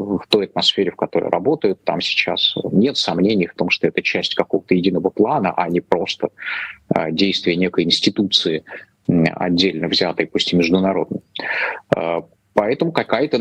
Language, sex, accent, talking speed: Russian, male, native, 140 wpm